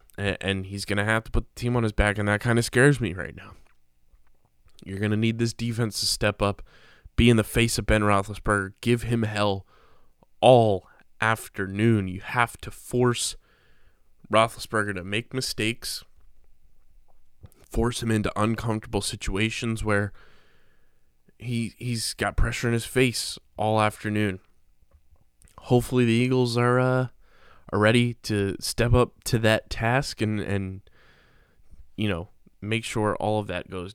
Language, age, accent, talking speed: English, 20-39, American, 155 wpm